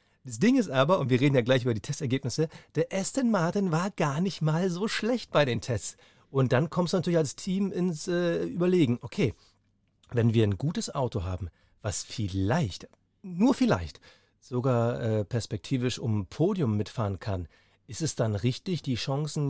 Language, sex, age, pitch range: German, male, 40-59, 115-155 Hz